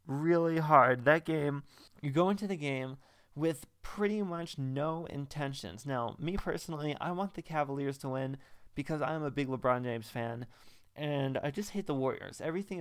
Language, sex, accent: English, male, American